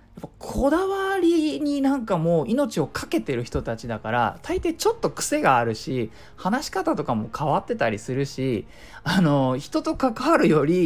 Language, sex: Japanese, male